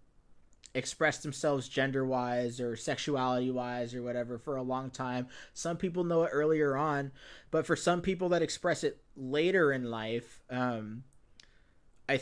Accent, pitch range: American, 125-150 Hz